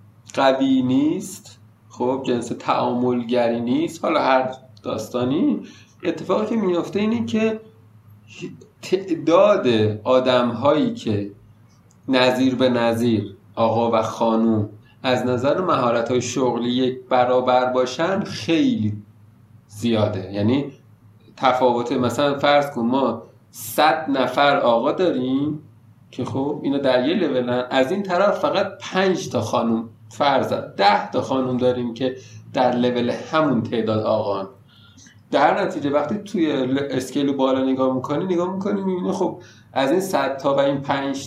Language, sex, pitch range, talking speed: Persian, male, 115-155 Hz, 130 wpm